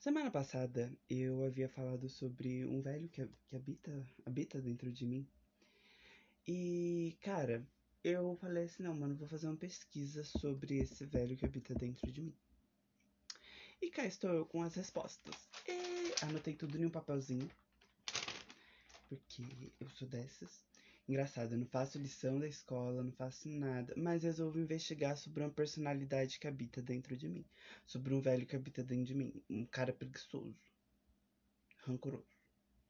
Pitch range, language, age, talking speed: 125-155 Hz, Portuguese, 20-39, 150 wpm